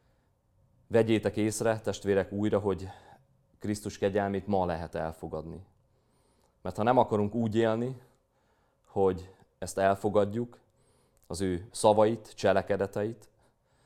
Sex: male